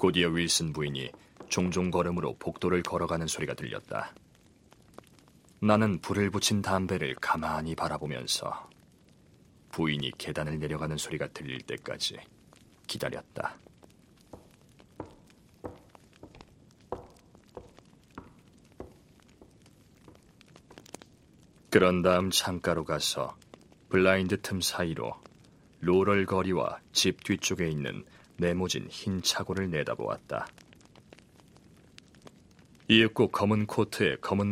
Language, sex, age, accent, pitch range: Korean, male, 40-59, native, 80-100 Hz